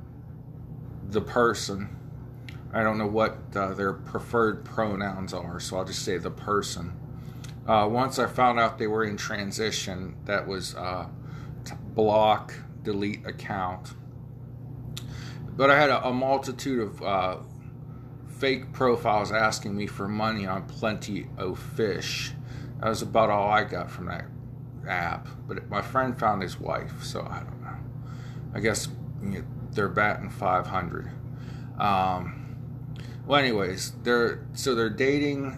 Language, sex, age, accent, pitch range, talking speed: English, male, 40-59, American, 110-130 Hz, 140 wpm